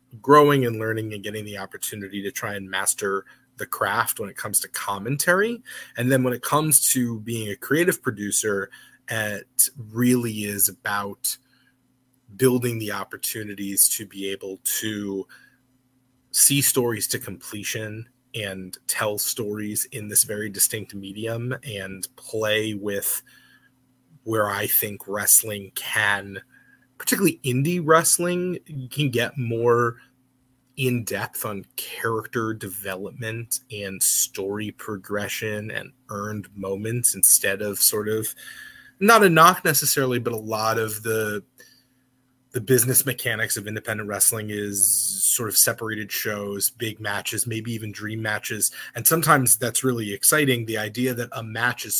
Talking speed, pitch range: 135 wpm, 105-130 Hz